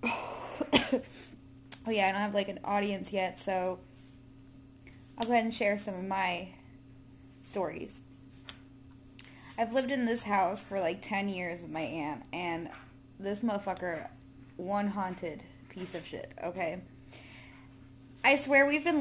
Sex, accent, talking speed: female, American, 140 wpm